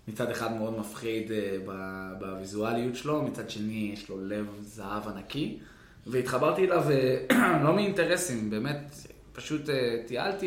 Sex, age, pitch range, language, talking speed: male, 20-39, 105-140 Hz, Hebrew, 130 wpm